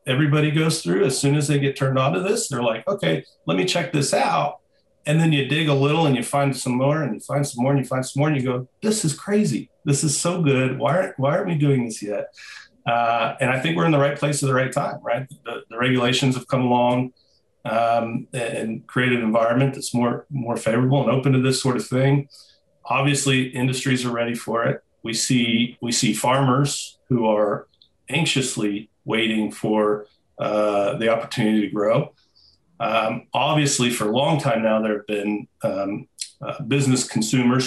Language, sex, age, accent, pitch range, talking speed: English, male, 40-59, American, 115-140 Hz, 210 wpm